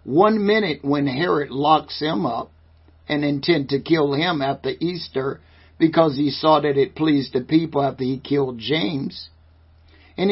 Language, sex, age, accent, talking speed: English, male, 60-79, American, 155 wpm